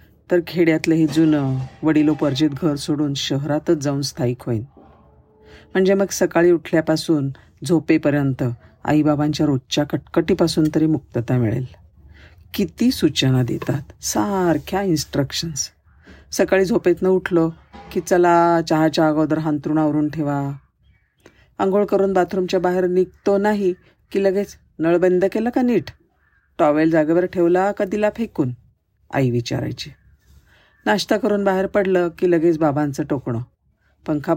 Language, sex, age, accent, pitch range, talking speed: Marathi, female, 50-69, native, 140-185 Hz, 115 wpm